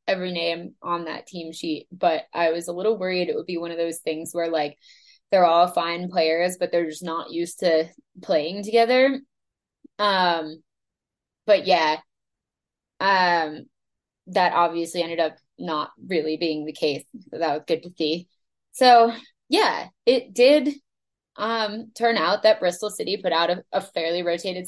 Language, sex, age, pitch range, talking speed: English, female, 20-39, 165-200 Hz, 165 wpm